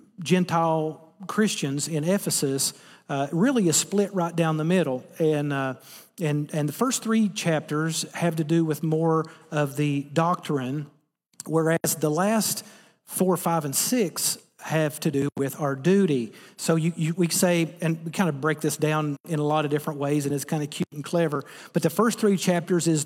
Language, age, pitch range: English, 40-59, 155-195 Hz